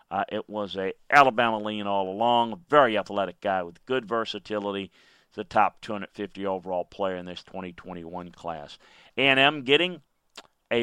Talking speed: 150 wpm